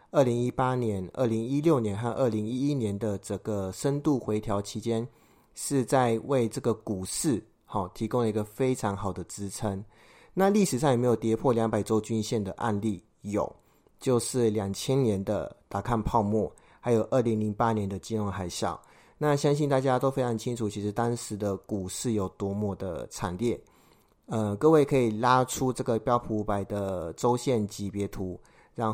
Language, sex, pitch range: Chinese, male, 100-125 Hz